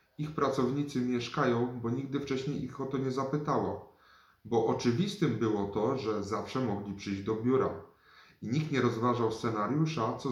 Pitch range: 105-130 Hz